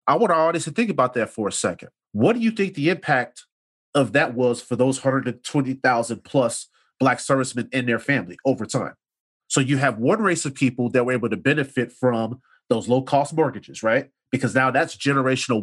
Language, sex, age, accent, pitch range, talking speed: English, male, 30-49, American, 120-140 Hz, 205 wpm